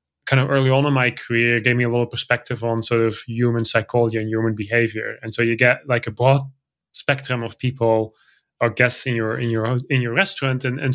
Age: 20-39